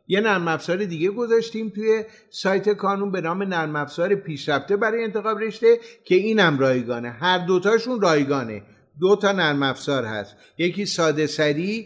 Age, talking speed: 50-69, 145 wpm